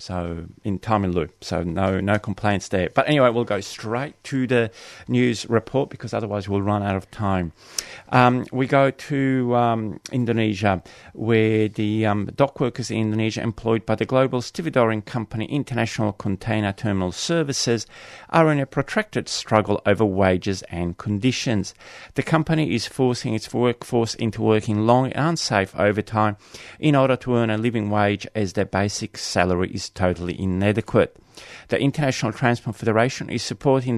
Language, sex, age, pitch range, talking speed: English, male, 30-49, 100-125 Hz, 160 wpm